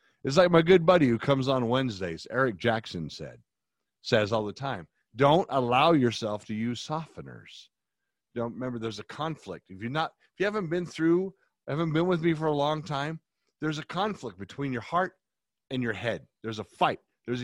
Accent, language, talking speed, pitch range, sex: American, English, 195 wpm, 95-155 Hz, male